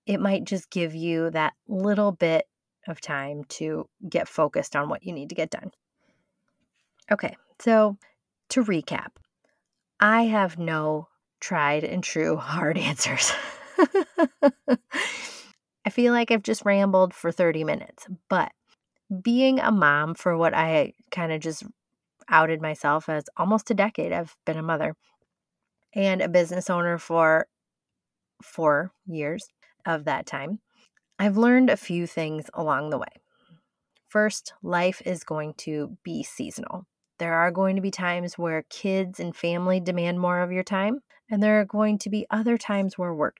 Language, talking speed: English, 155 wpm